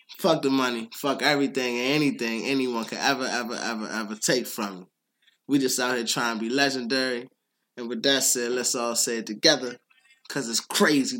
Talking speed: 195 wpm